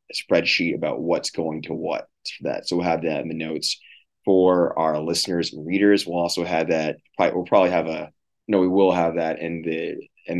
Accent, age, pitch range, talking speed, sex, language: American, 20-39, 85-95 Hz, 220 wpm, male, English